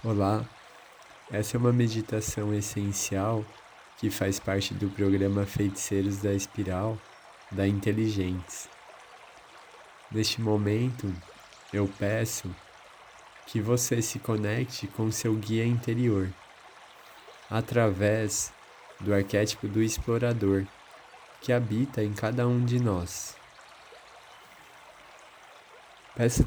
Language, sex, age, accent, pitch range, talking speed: Portuguese, male, 20-39, Brazilian, 100-115 Hz, 95 wpm